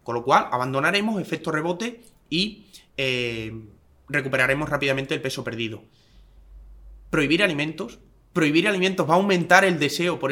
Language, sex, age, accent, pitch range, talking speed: Spanish, male, 20-39, Spanish, 130-165 Hz, 135 wpm